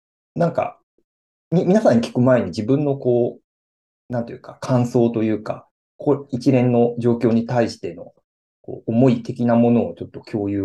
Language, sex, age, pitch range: Japanese, male, 40-59, 115-195 Hz